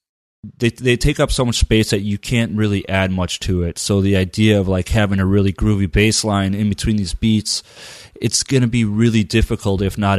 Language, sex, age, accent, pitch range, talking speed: English, male, 30-49, American, 90-105 Hz, 225 wpm